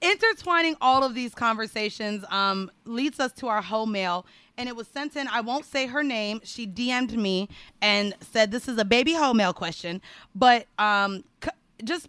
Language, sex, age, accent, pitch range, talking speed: English, female, 30-49, American, 205-265 Hz, 185 wpm